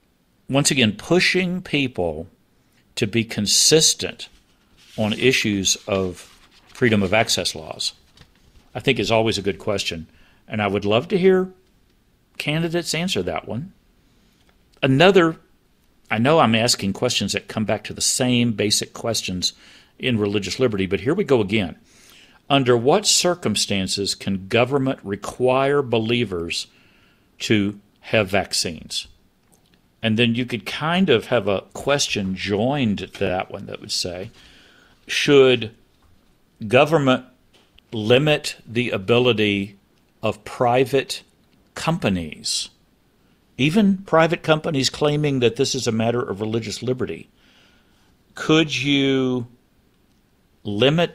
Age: 50-69